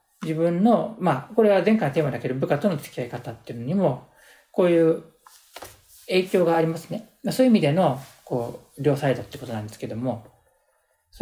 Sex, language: male, Japanese